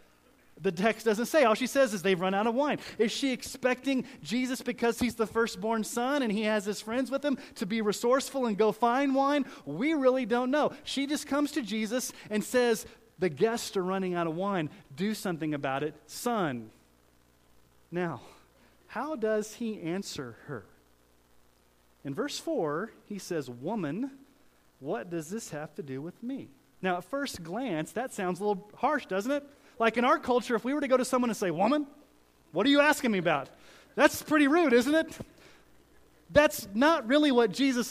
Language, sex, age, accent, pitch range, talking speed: English, male, 30-49, American, 170-255 Hz, 190 wpm